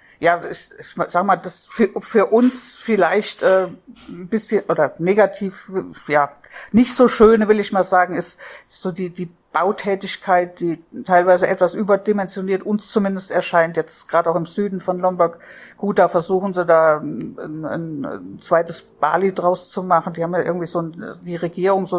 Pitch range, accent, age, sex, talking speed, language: 175-210 Hz, German, 60-79, female, 175 wpm, German